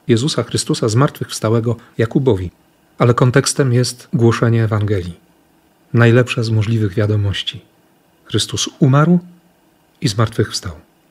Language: Polish